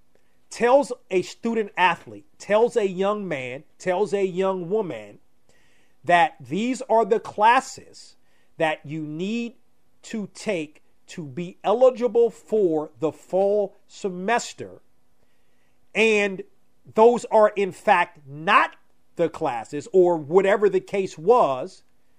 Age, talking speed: 40-59, 115 wpm